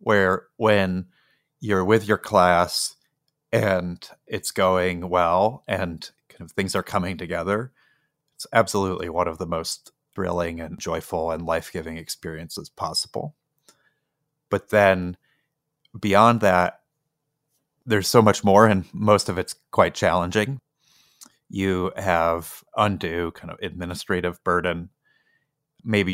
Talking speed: 120 wpm